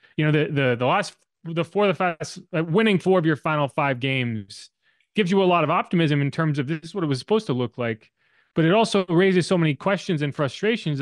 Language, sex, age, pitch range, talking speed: English, male, 30-49, 130-185 Hz, 245 wpm